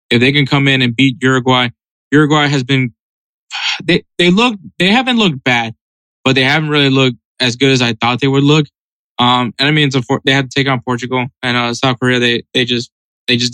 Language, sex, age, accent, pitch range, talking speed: English, male, 20-39, American, 125-145 Hz, 225 wpm